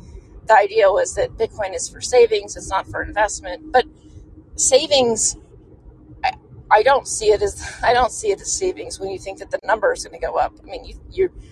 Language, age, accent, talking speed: English, 30-49, American, 215 wpm